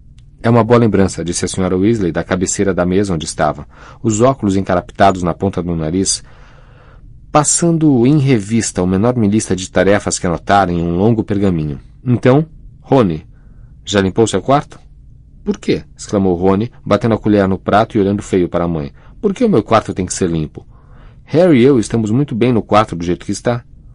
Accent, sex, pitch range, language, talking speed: Brazilian, male, 90-120 Hz, Portuguese, 195 wpm